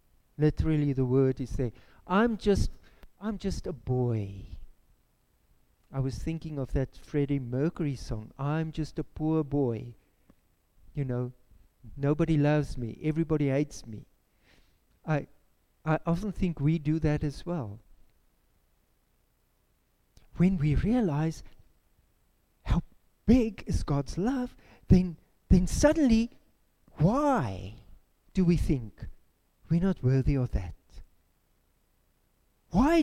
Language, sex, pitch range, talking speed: English, male, 120-175 Hz, 115 wpm